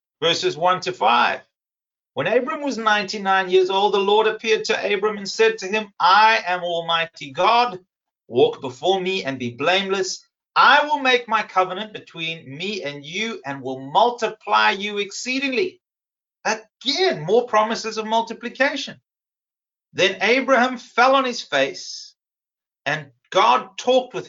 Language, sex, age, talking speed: English, male, 40-59, 145 wpm